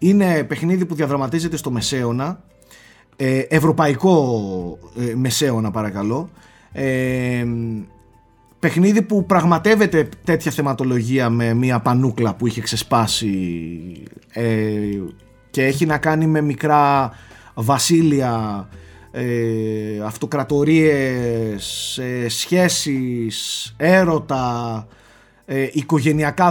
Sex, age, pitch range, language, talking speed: male, 30-49, 115-165 Hz, Greek, 70 wpm